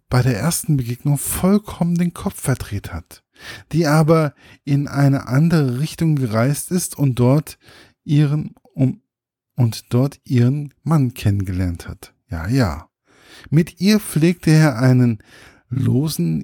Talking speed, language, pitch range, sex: 130 wpm, German, 105-145 Hz, male